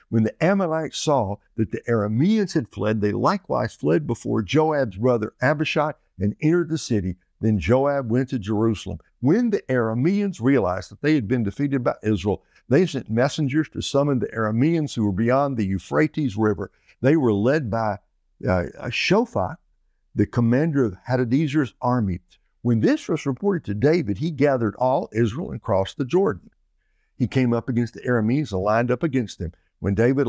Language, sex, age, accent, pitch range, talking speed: English, male, 60-79, American, 105-150 Hz, 170 wpm